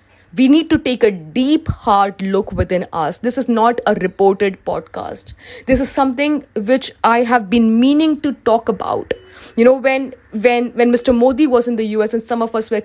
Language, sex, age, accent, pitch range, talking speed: English, female, 20-39, Indian, 195-255 Hz, 200 wpm